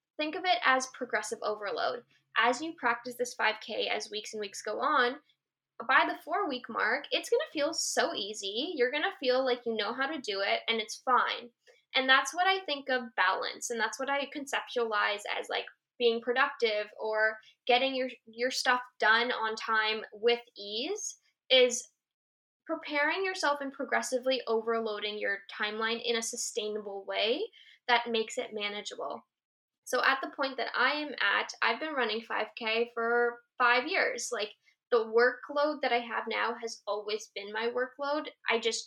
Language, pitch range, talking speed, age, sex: English, 225-290 Hz, 175 wpm, 10-29, female